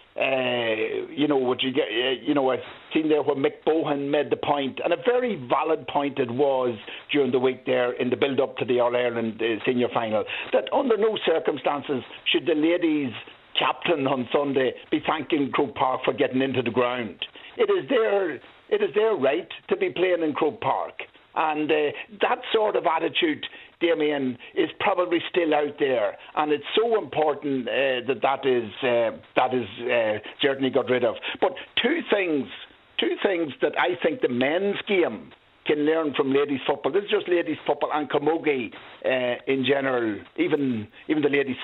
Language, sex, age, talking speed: English, male, 60-79, 185 wpm